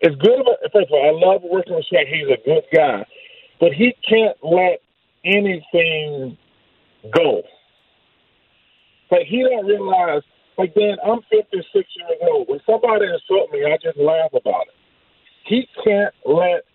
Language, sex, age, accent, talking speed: English, male, 40-59, American, 160 wpm